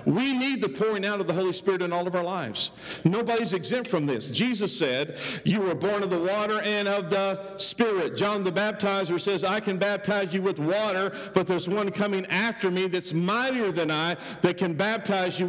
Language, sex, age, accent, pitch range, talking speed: English, male, 50-69, American, 160-210 Hz, 210 wpm